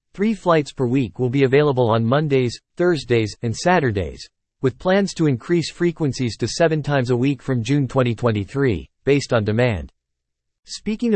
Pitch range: 115-150 Hz